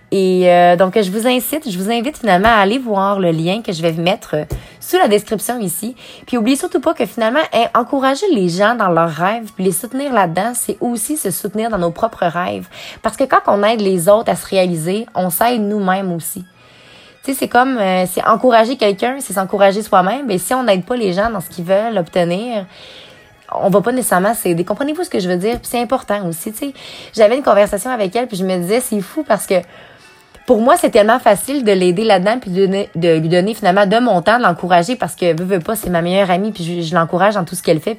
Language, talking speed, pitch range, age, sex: French, 240 wpm, 180-235 Hz, 20-39, female